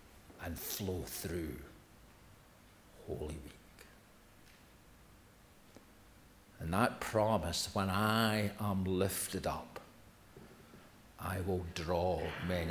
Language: English